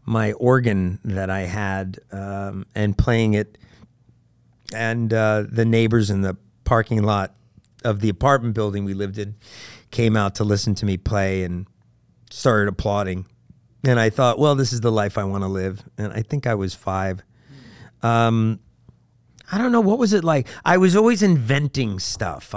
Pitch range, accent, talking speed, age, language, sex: 105-130 Hz, American, 175 wpm, 50-69, English, male